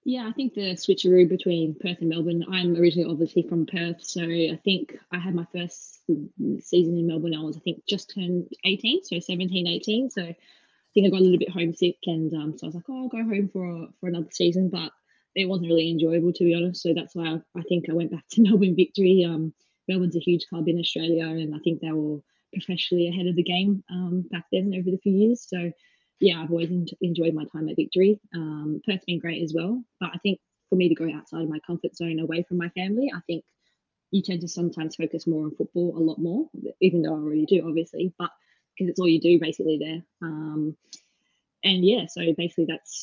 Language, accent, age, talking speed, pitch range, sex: English, Australian, 20-39, 230 wpm, 165-195 Hz, female